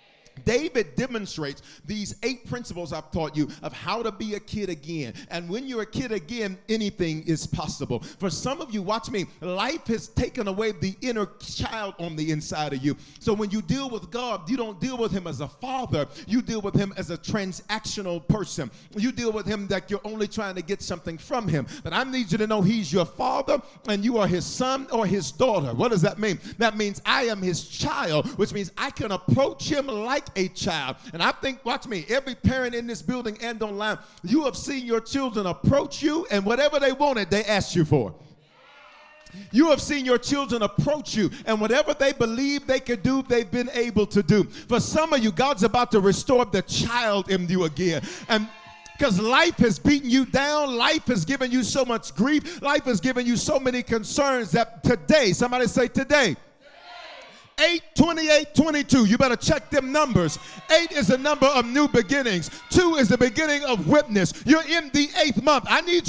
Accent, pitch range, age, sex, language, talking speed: American, 195-265 Hz, 40-59, male, English, 205 wpm